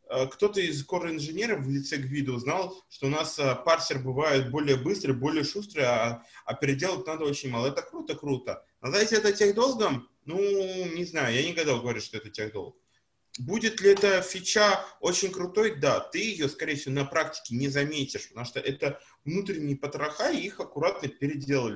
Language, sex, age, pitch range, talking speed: Russian, male, 20-39, 135-190 Hz, 170 wpm